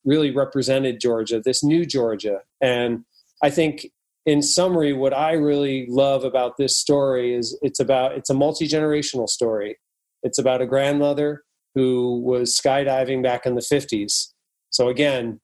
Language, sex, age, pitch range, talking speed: English, male, 30-49, 120-140 Hz, 150 wpm